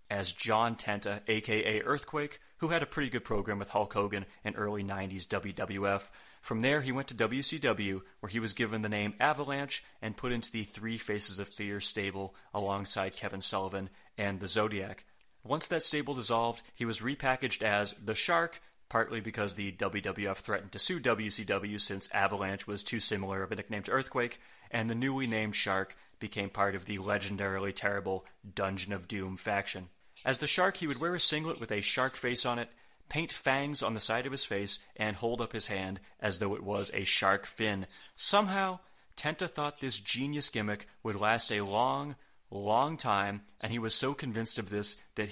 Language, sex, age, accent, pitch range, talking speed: English, male, 30-49, American, 100-125 Hz, 190 wpm